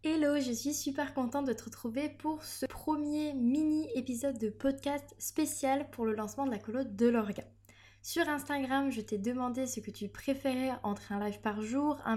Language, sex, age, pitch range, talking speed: French, female, 20-39, 215-270 Hz, 190 wpm